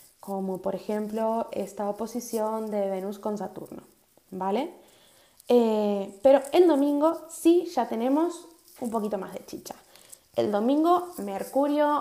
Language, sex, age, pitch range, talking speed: Spanish, female, 20-39, 200-260 Hz, 125 wpm